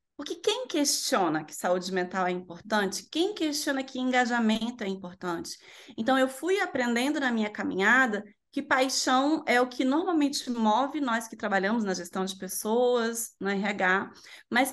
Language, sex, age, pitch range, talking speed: Portuguese, female, 20-39, 215-280 Hz, 155 wpm